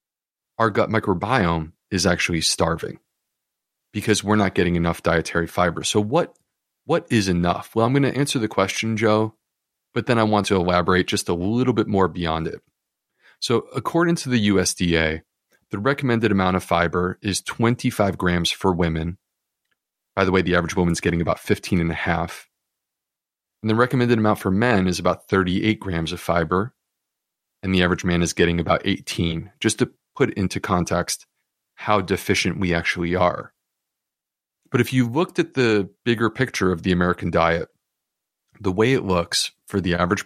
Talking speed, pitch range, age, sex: 175 wpm, 90-110 Hz, 30-49, male